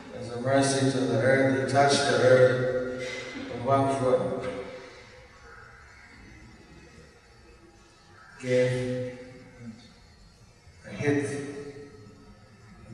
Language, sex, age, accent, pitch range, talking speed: English, male, 60-79, American, 105-130 Hz, 75 wpm